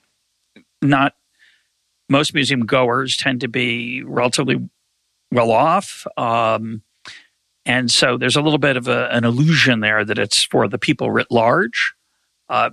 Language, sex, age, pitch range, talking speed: English, male, 50-69, 120-145 Hz, 125 wpm